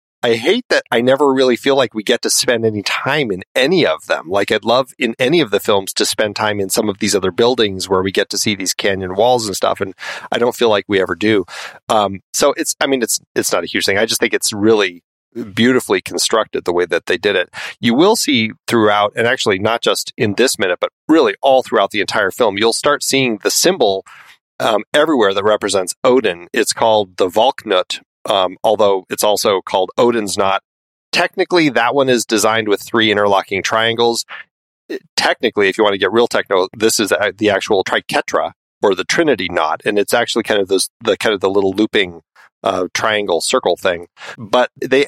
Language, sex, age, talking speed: English, male, 30-49, 215 wpm